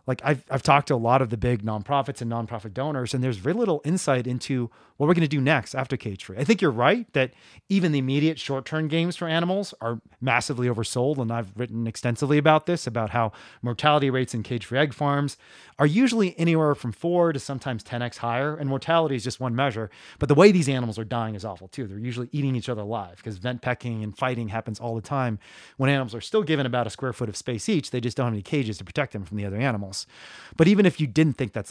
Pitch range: 115-150 Hz